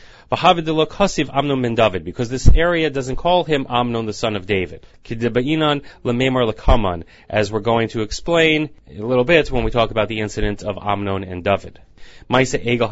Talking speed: 135 wpm